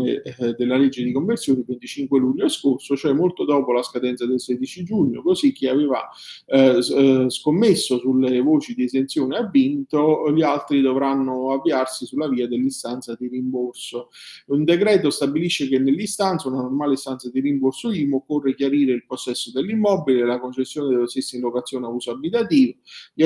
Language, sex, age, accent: Italian, male, 40-59, native